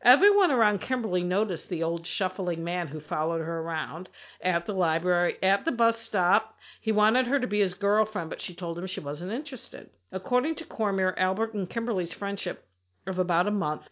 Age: 50-69